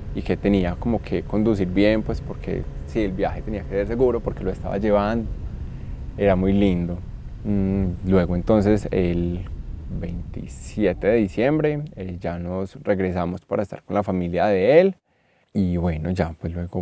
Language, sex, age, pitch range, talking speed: Spanish, male, 20-39, 90-110 Hz, 155 wpm